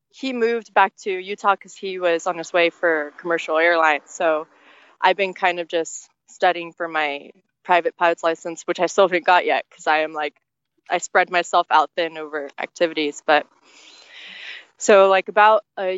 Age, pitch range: 20-39, 170-250 Hz